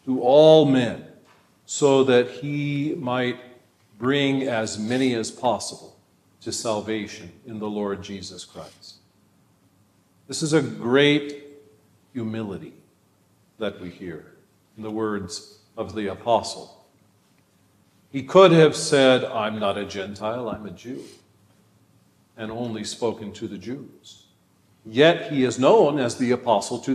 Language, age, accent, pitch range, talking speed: English, 50-69, American, 100-135 Hz, 130 wpm